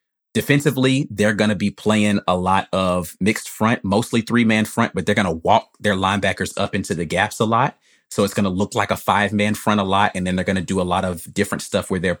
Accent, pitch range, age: American, 90-105 Hz, 30-49